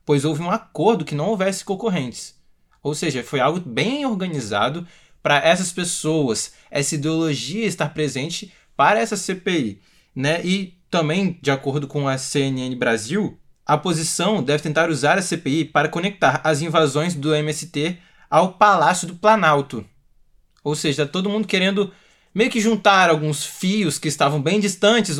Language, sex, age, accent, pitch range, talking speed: Portuguese, male, 20-39, Brazilian, 145-195 Hz, 155 wpm